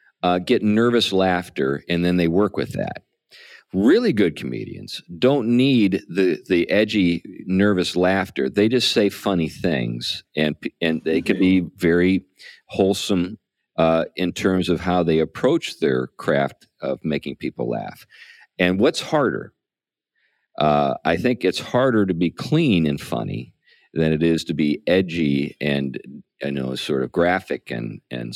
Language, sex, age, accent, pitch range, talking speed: English, male, 50-69, American, 75-95 Hz, 150 wpm